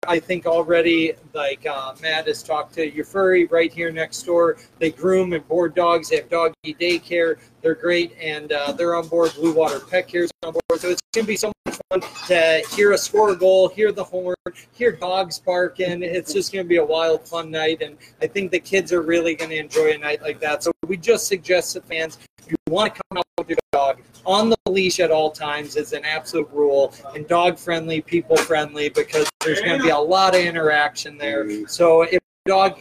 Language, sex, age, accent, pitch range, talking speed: English, male, 30-49, American, 155-185 Hz, 225 wpm